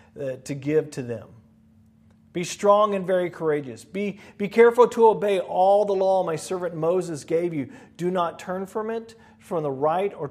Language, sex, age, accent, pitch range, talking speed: English, male, 40-59, American, 145-195 Hz, 185 wpm